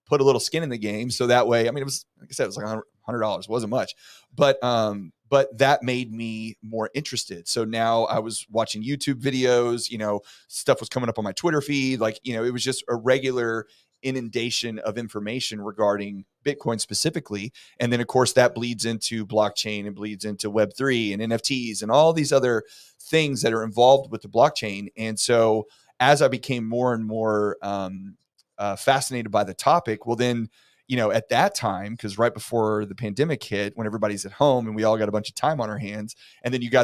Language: English